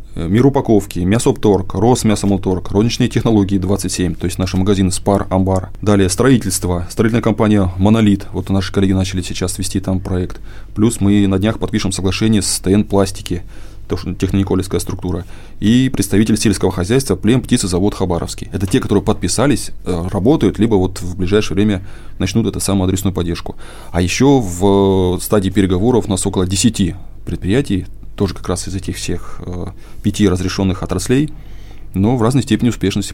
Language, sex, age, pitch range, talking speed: Russian, male, 20-39, 95-110 Hz, 150 wpm